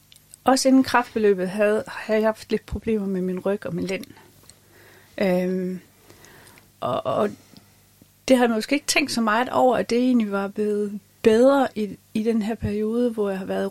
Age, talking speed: 30-49, 185 wpm